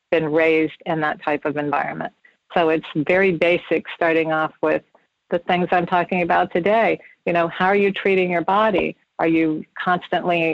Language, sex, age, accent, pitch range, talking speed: English, female, 50-69, American, 165-190 Hz, 175 wpm